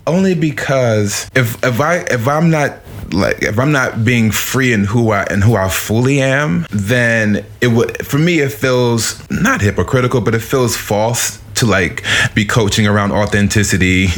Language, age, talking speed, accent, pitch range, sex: English, 20-39, 175 wpm, American, 100-115 Hz, male